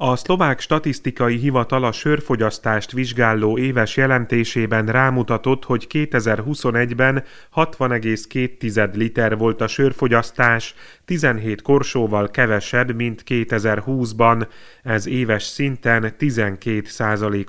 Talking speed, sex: 90 wpm, male